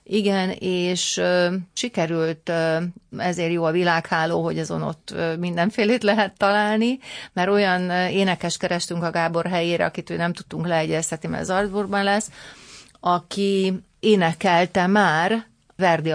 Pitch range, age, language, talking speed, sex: 165-200 Hz, 40-59, Hungarian, 120 wpm, female